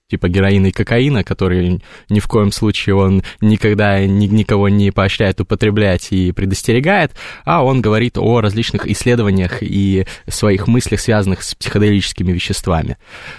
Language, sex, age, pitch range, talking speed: Russian, male, 20-39, 95-110 Hz, 135 wpm